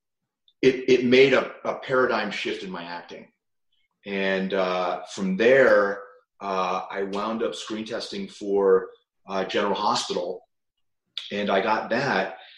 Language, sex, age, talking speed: English, male, 30-49, 135 wpm